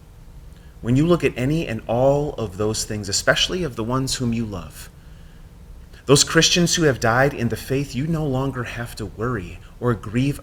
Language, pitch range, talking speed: English, 105-145 Hz, 190 wpm